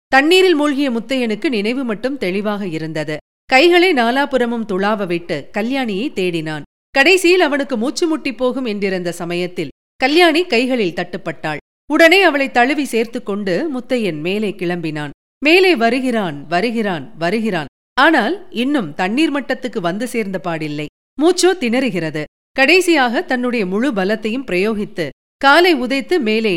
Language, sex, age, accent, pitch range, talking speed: Tamil, female, 40-59, native, 185-285 Hz, 115 wpm